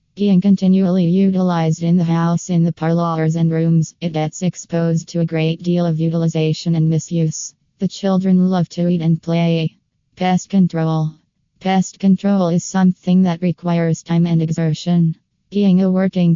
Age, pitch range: 20-39, 165-180 Hz